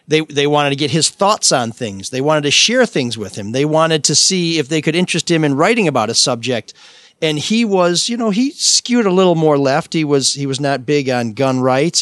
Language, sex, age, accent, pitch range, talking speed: English, male, 40-59, American, 130-175 Hz, 250 wpm